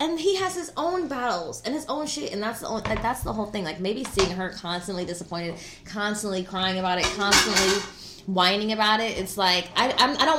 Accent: American